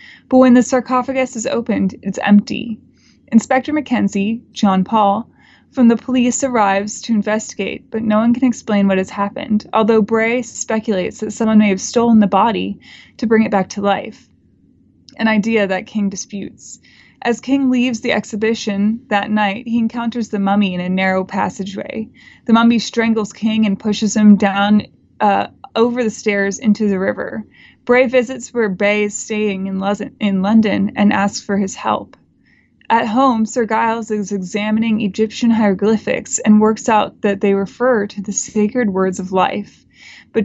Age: 20-39